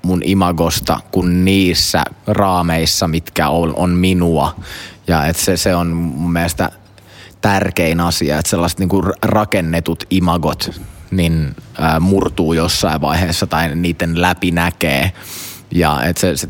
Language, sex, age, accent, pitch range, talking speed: Finnish, male, 20-39, native, 85-95 Hz, 125 wpm